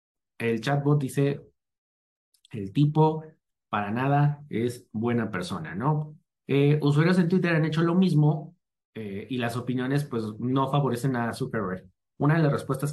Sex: male